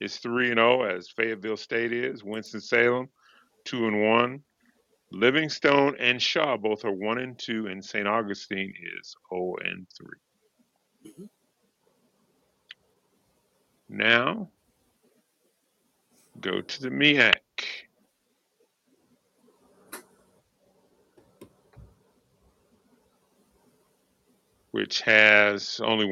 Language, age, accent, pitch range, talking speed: English, 50-69, American, 110-125 Hz, 80 wpm